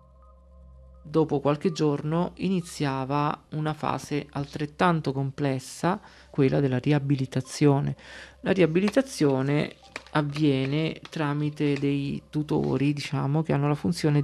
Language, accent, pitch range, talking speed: Italian, native, 135-155 Hz, 95 wpm